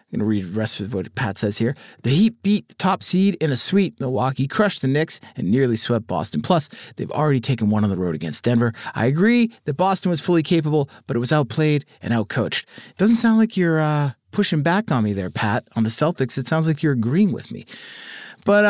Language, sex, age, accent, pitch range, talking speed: English, male, 30-49, American, 120-180 Hz, 240 wpm